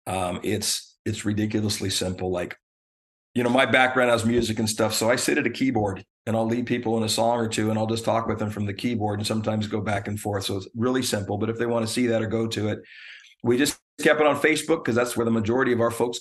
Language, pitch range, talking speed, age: English, 105-115 Hz, 270 wpm, 40-59